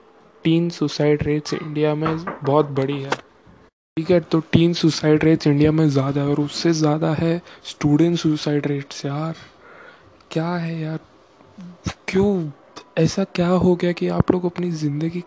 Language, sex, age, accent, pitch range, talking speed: Hindi, male, 20-39, native, 145-165 Hz, 155 wpm